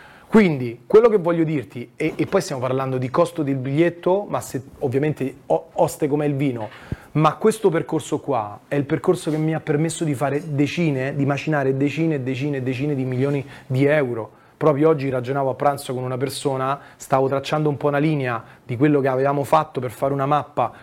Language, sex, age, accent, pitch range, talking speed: Italian, male, 30-49, native, 135-175 Hz, 200 wpm